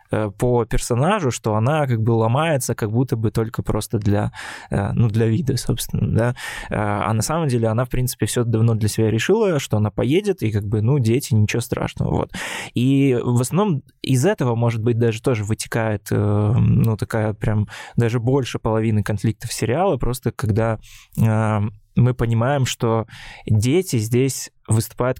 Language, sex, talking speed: Russian, male, 160 wpm